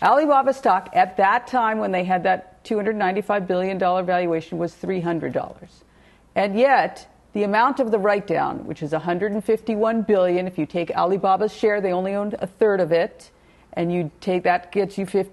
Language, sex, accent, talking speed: English, female, American, 170 wpm